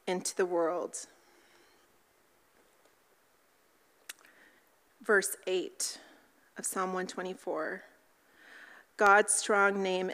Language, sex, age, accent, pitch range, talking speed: English, female, 30-49, American, 185-220 Hz, 65 wpm